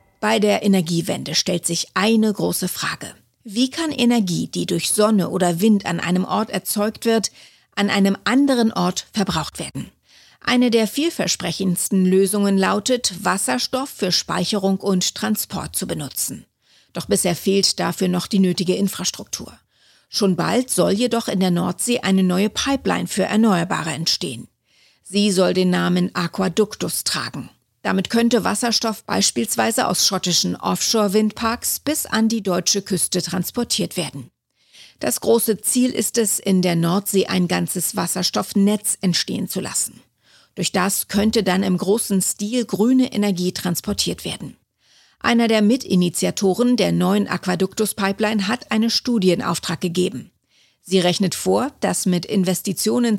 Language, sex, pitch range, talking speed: German, female, 185-220 Hz, 135 wpm